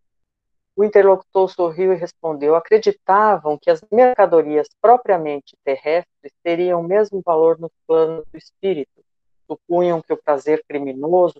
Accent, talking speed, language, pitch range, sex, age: Brazilian, 125 wpm, Portuguese, 150-180 Hz, female, 50-69